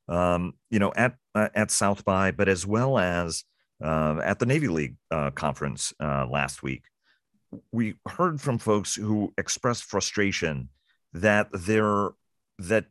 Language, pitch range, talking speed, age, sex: English, 90-115 Hz, 140 wpm, 40-59, male